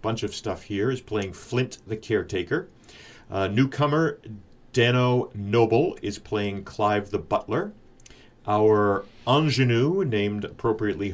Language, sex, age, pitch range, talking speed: English, male, 40-59, 100-120 Hz, 120 wpm